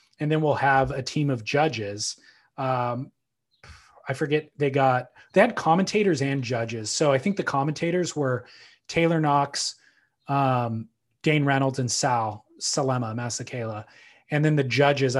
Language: English